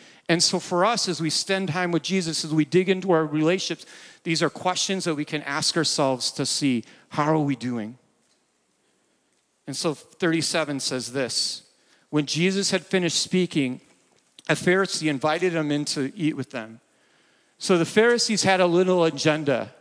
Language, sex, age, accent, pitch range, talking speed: English, male, 50-69, American, 140-180 Hz, 170 wpm